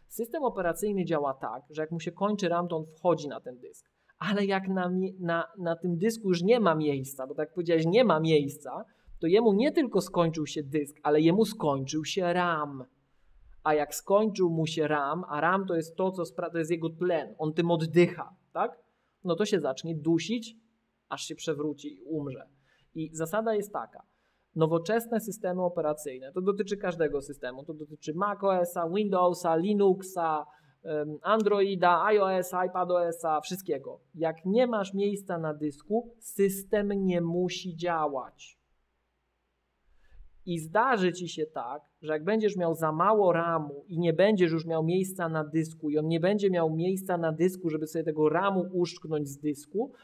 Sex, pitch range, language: male, 155-195 Hz, Polish